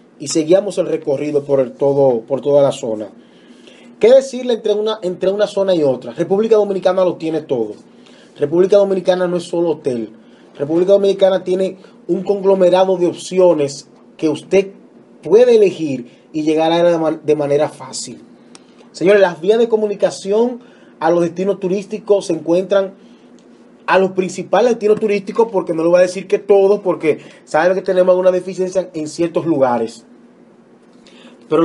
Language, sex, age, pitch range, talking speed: Spanish, male, 30-49, 155-205 Hz, 155 wpm